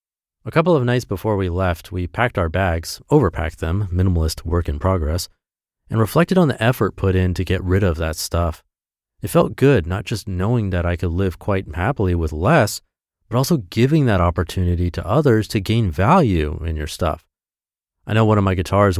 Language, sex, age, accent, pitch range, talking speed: English, male, 30-49, American, 90-120 Hz, 200 wpm